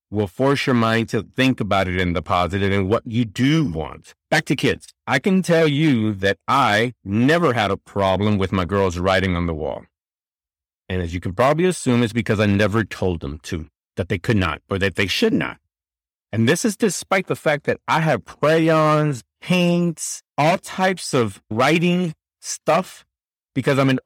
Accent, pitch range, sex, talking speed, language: American, 95-135 Hz, male, 190 wpm, English